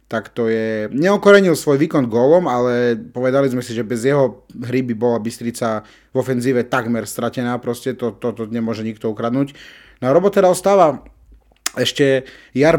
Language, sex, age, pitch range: Slovak, male, 30-49, 120-145 Hz